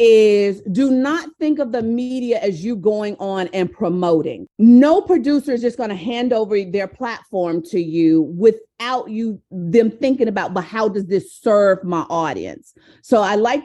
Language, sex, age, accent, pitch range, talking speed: English, female, 40-59, American, 190-260 Hz, 180 wpm